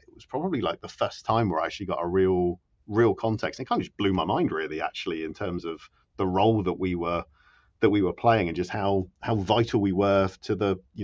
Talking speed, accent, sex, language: 250 wpm, British, male, English